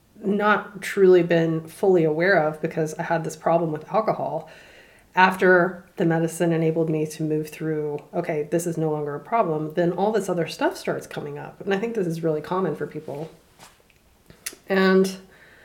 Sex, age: female, 20-39